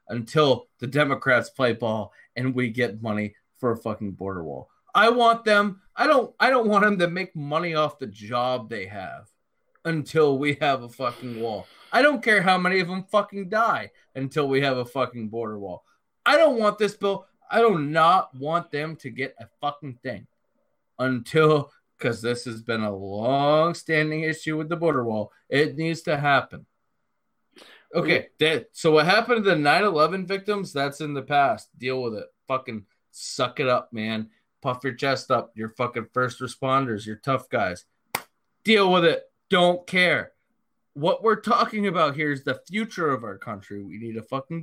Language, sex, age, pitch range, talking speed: English, male, 30-49, 120-170 Hz, 185 wpm